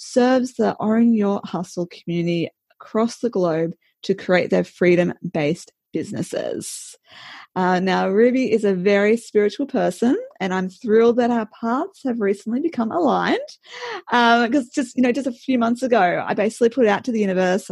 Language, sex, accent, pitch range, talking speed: English, female, Australian, 185-245 Hz, 170 wpm